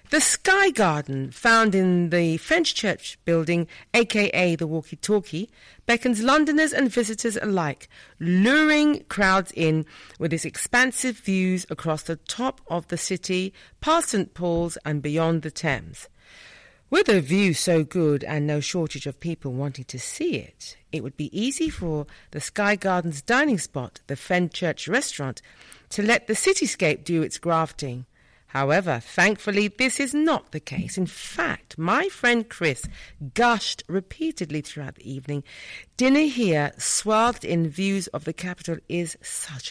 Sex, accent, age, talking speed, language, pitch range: female, British, 40-59, 150 wpm, English, 160-235 Hz